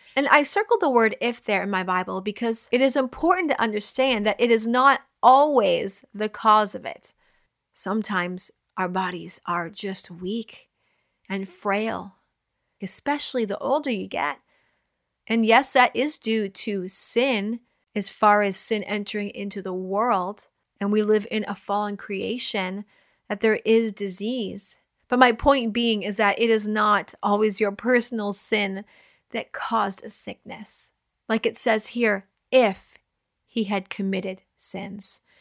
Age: 30-49